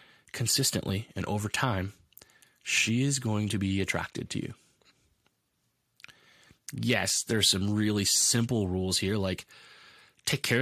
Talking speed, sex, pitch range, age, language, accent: 125 wpm, male, 100-135 Hz, 20-39, English, American